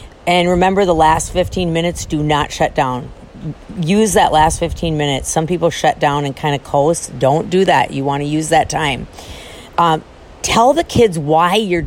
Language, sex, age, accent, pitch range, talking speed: English, female, 50-69, American, 150-185 Hz, 190 wpm